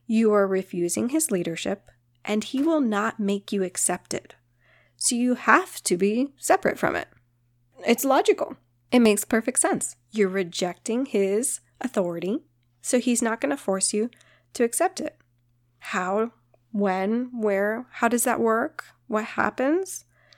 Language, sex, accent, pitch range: English, female, American, 180-235 Hz